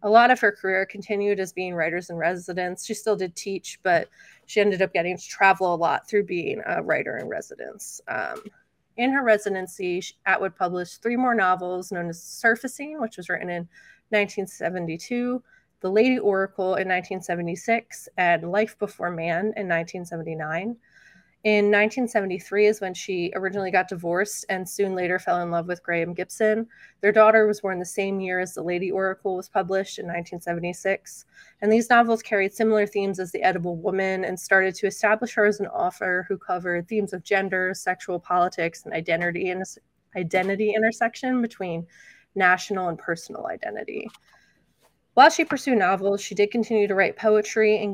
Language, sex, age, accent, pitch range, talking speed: English, female, 20-39, American, 180-215 Hz, 170 wpm